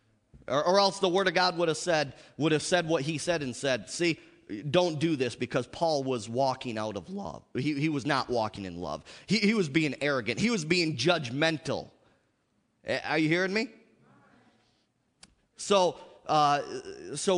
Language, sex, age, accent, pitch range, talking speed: English, male, 30-49, American, 130-180 Hz, 175 wpm